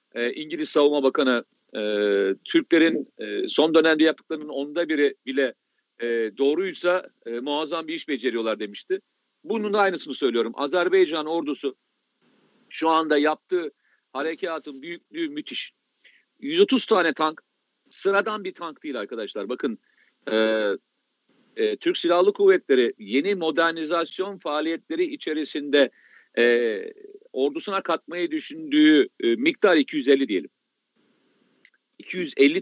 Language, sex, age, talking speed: Turkish, male, 50-69, 110 wpm